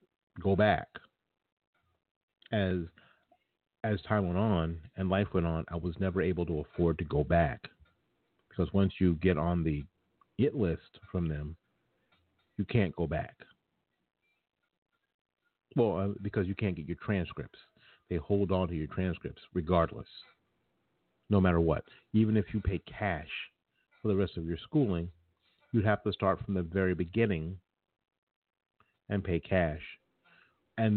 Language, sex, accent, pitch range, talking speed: English, male, American, 85-100 Hz, 145 wpm